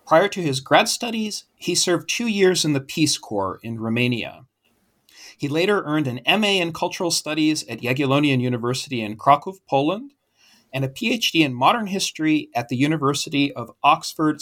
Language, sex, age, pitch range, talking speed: English, male, 40-59, 130-170 Hz, 165 wpm